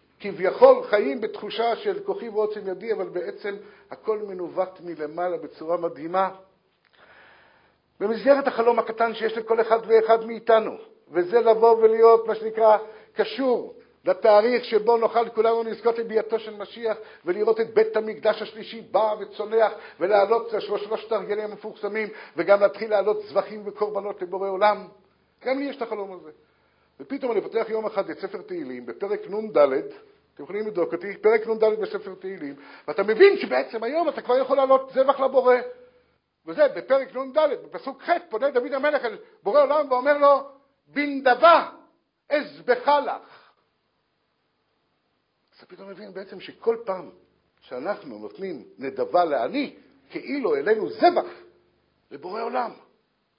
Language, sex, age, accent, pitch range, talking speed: Hebrew, male, 50-69, native, 205-275 Hz, 135 wpm